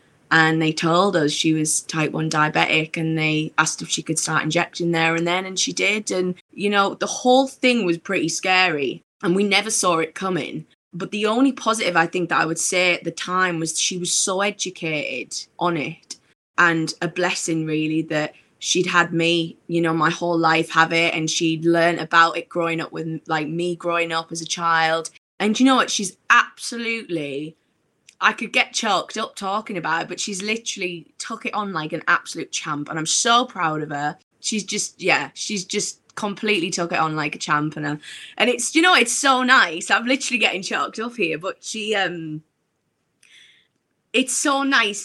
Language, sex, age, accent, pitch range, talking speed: English, female, 20-39, British, 160-210 Hz, 200 wpm